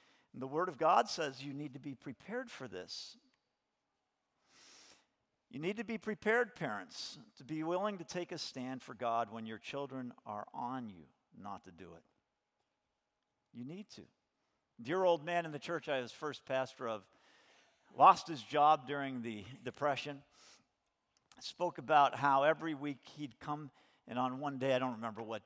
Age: 50-69